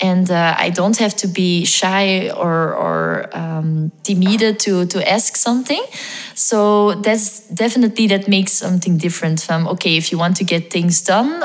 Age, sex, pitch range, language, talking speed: 20-39, female, 170-200 Hz, English, 175 wpm